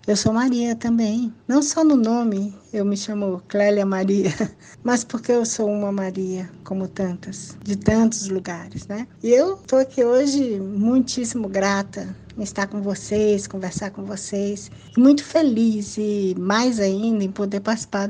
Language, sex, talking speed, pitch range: Portuguese, female, 155 wpm, 200-245 Hz